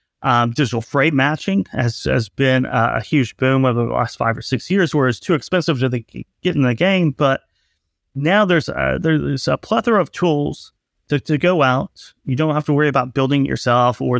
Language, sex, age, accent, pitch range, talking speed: English, male, 30-49, American, 125-160 Hz, 215 wpm